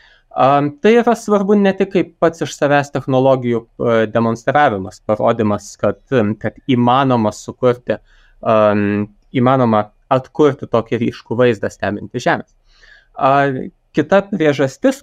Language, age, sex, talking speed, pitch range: English, 20-39, male, 100 wpm, 115-145 Hz